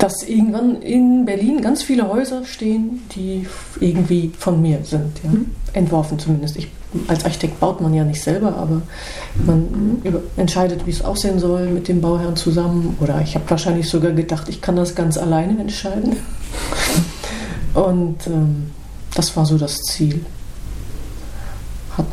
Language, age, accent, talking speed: German, 30-49, German, 145 wpm